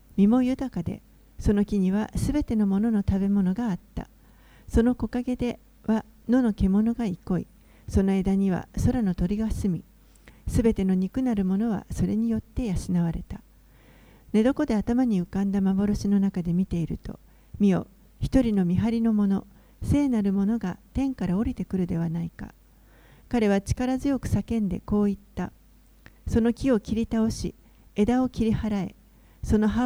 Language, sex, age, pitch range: Japanese, female, 40-59, 195-235 Hz